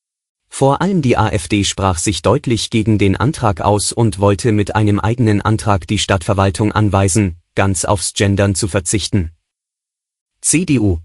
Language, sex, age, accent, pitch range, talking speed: German, male, 30-49, German, 100-125 Hz, 140 wpm